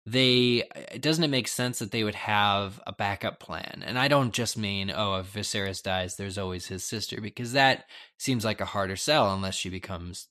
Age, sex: 20-39, male